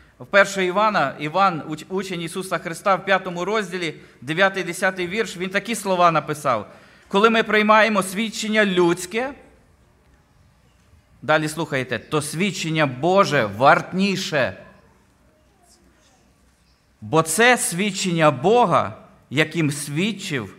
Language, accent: Ukrainian, native